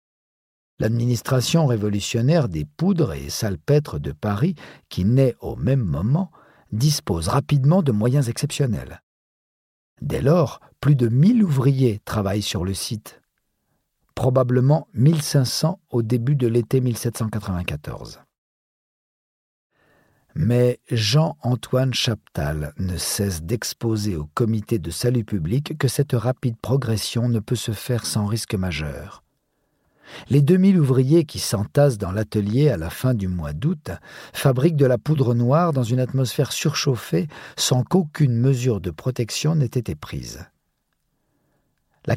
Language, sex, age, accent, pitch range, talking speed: French, male, 50-69, French, 105-145 Hz, 125 wpm